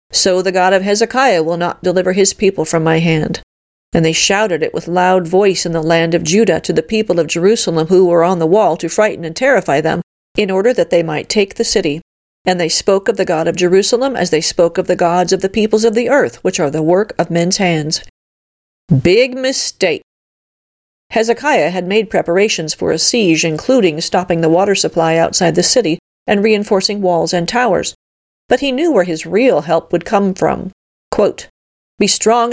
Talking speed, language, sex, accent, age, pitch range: 205 wpm, English, female, American, 40-59, 170-210 Hz